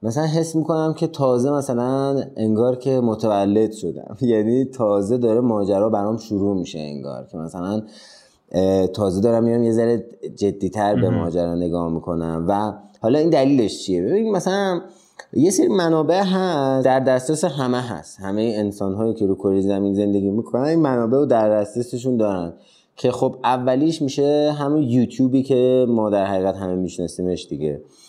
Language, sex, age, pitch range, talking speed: Persian, male, 30-49, 100-130 Hz, 150 wpm